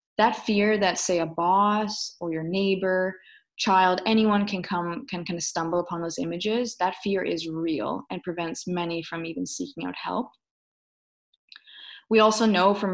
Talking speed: 165 wpm